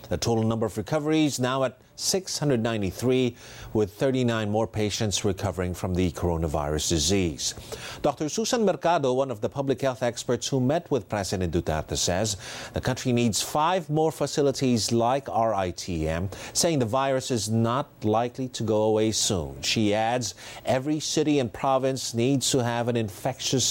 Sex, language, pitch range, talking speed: male, English, 110-145 Hz, 155 wpm